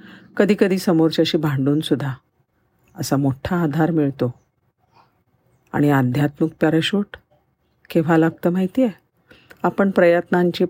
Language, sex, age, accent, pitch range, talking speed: Marathi, female, 50-69, native, 150-195 Hz, 100 wpm